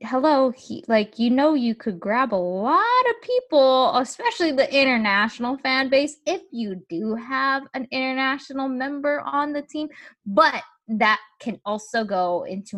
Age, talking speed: 10-29, 155 wpm